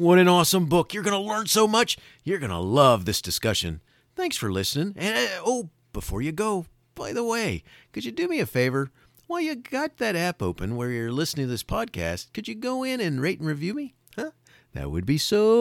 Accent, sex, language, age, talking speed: American, male, English, 40-59, 230 wpm